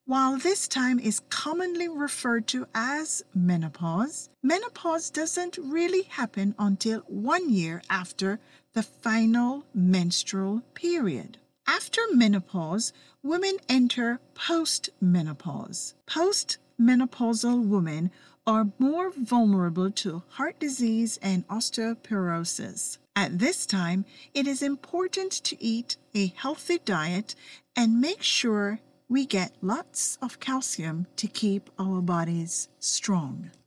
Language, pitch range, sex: English, 190-280 Hz, female